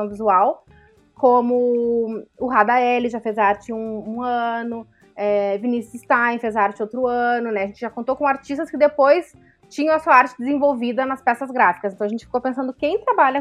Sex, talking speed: female, 190 wpm